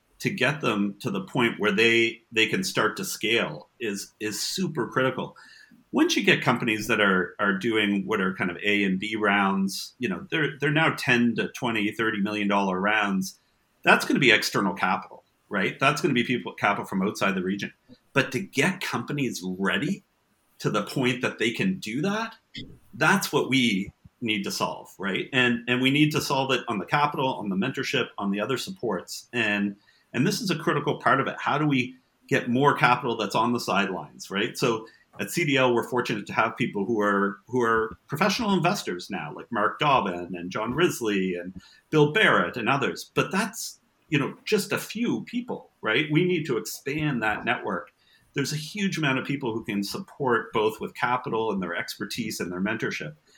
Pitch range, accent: 105-150 Hz, American